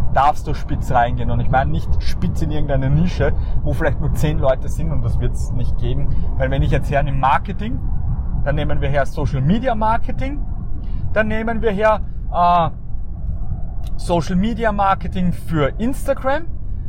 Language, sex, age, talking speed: German, male, 30-49, 165 wpm